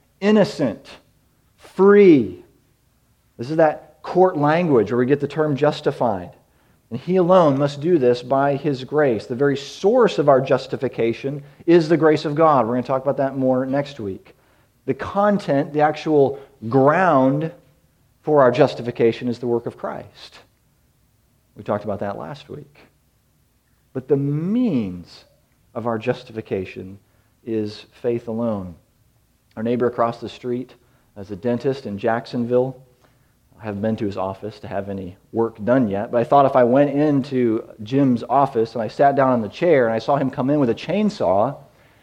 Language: English